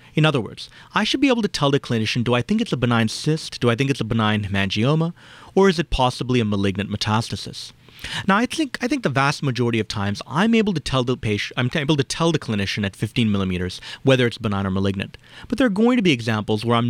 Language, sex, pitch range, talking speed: English, male, 105-145 Hz, 250 wpm